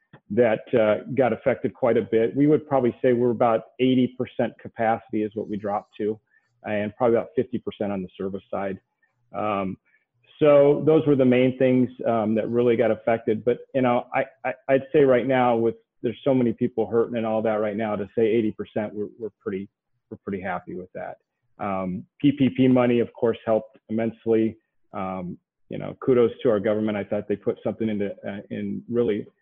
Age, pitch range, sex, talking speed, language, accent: 40-59, 105-120 Hz, male, 190 wpm, English, American